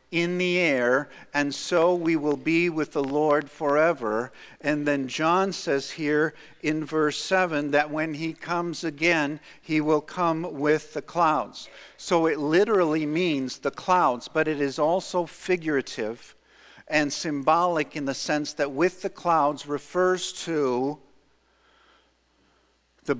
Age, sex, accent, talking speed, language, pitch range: 50-69, male, American, 140 wpm, English, 115-160 Hz